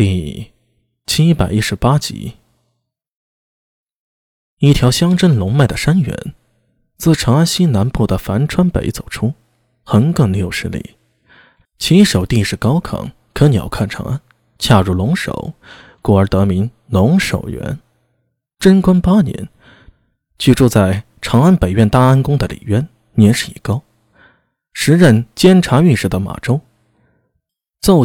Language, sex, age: Chinese, male, 20-39